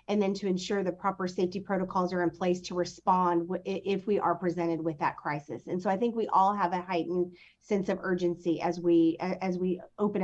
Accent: American